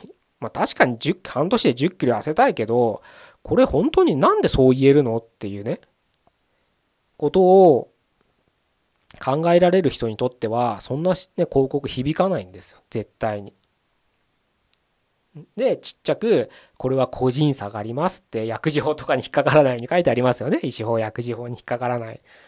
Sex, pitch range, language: male, 115-150 Hz, Japanese